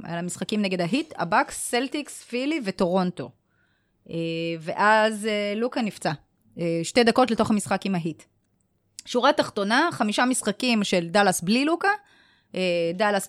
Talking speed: 115 wpm